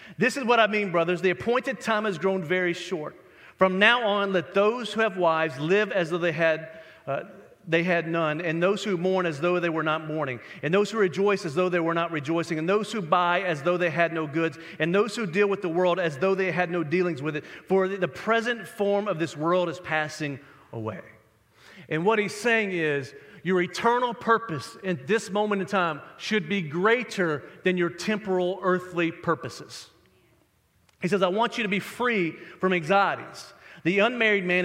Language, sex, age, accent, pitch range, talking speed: English, male, 40-59, American, 165-205 Hz, 205 wpm